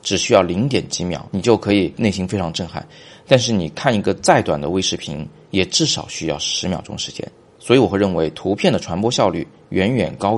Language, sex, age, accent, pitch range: Chinese, male, 30-49, native, 85-105 Hz